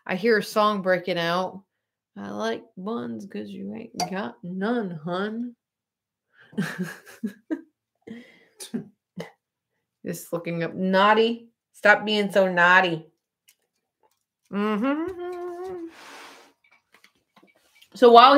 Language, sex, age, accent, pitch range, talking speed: English, female, 30-49, American, 180-225 Hz, 85 wpm